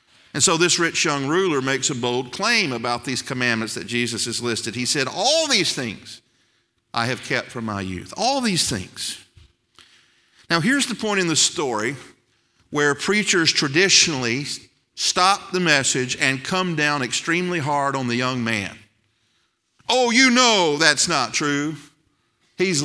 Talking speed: 160 wpm